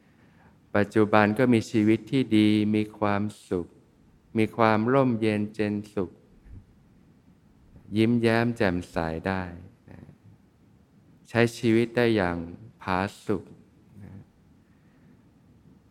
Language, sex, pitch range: Thai, male, 95-115 Hz